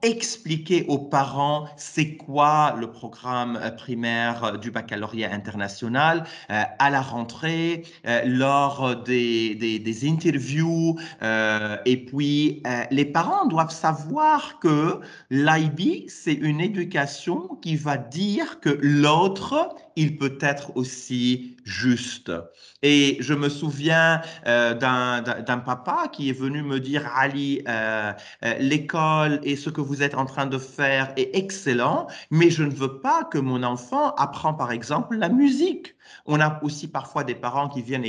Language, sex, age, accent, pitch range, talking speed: English, male, 40-59, French, 125-155 Hz, 145 wpm